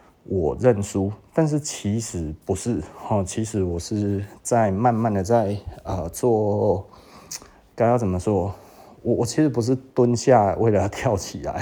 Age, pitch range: 30-49, 95-120 Hz